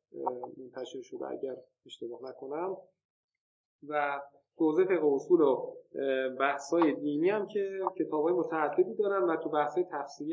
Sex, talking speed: male, 130 wpm